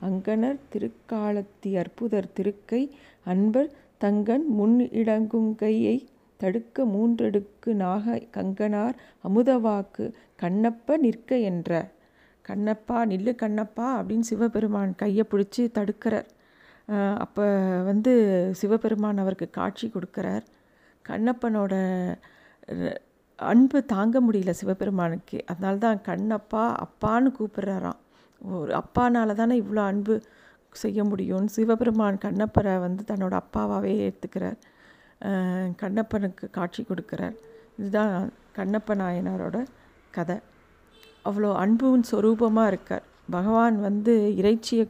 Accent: native